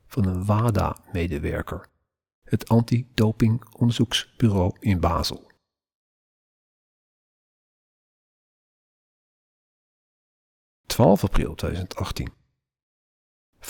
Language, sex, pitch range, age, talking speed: Dutch, male, 95-125 Hz, 50-69, 45 wpm